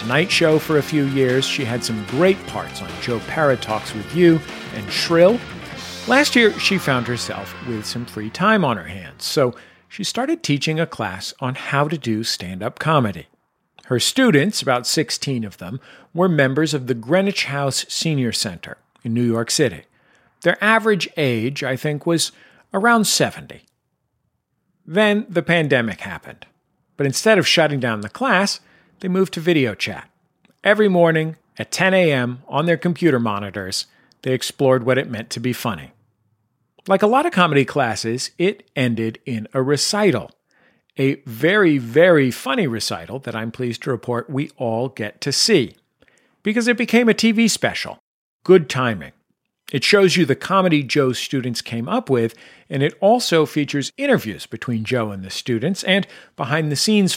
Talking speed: 170 wpm